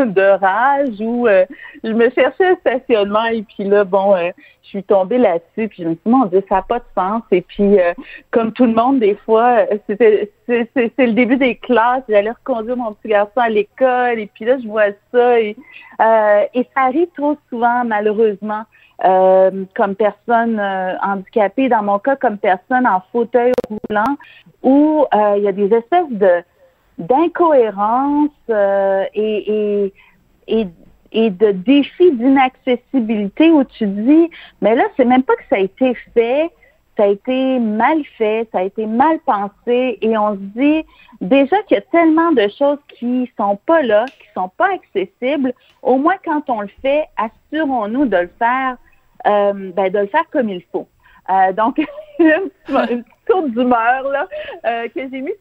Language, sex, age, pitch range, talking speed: French, female, 50-69, 205-270 Hz, 185 wpm